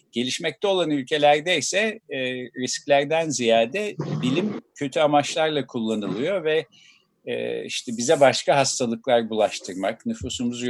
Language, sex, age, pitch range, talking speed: Turkish, male, 50-69, 125-180 Hz, 95 wpm